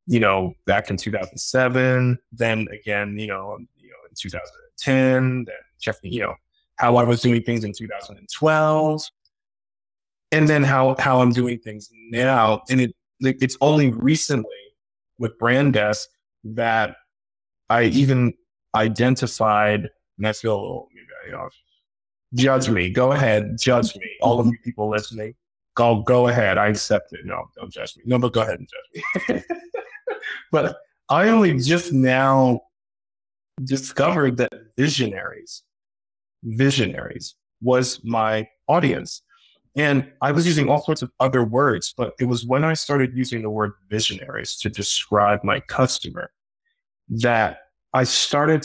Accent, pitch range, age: American, 110-135 Hz, 30-49